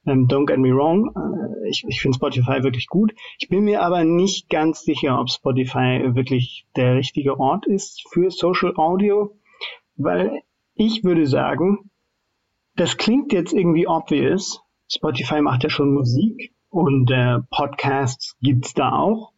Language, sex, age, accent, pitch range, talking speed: German, male, 50-69, German, 135-175 Hz, 145 wpm